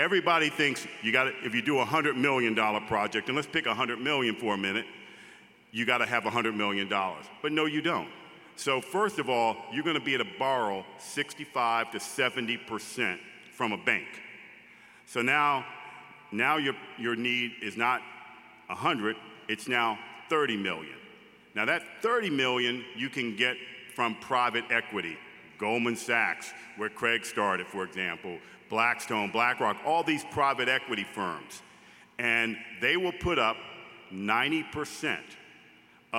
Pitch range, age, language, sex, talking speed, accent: 115-145 Hz, 50-69, English, male, 145 wpm, American